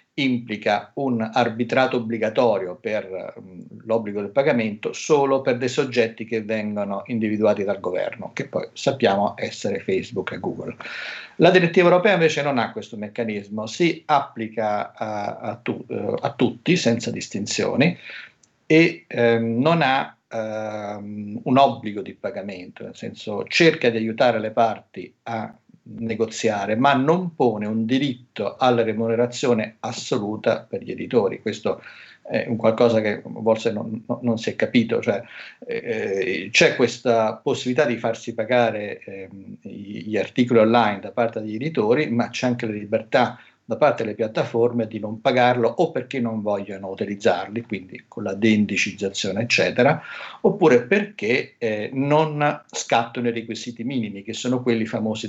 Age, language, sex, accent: 50-69, Italian, male, native